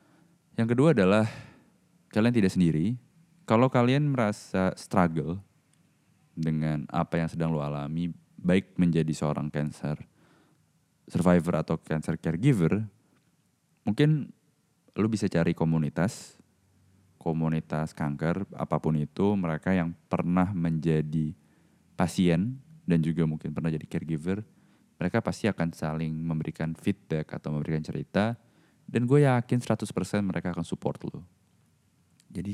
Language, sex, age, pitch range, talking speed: Indonesian, male, 20-39, 80-110 Hz, 115 wpm